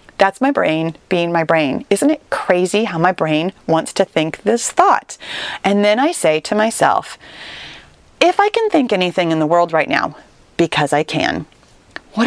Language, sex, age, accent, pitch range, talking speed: English, female, 30-49, American, 175-255 Hz, 180 wpm